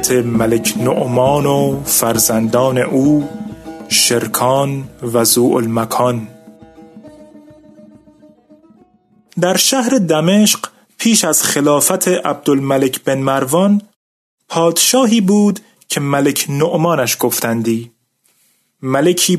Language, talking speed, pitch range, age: Persian, 70 wpm, 135-180 Hz, 30-49